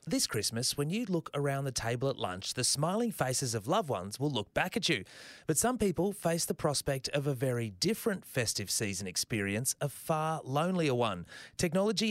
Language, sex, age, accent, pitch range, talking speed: English, male, 30-49, Australian, 115-160 Hz, 195 wpm